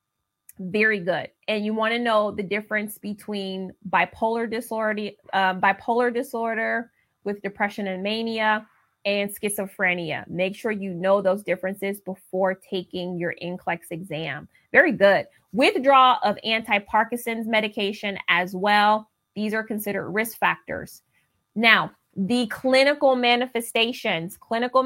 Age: 20-39